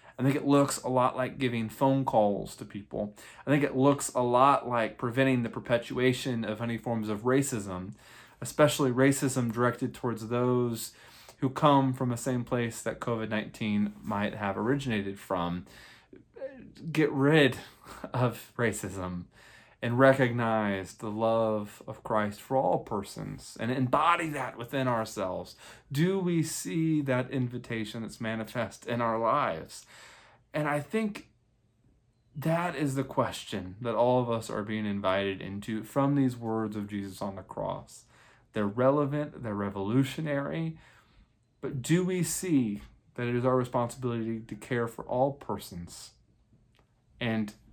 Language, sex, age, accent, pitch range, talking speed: English, male, 20-39, American, 105-130 Hz, 145 wpm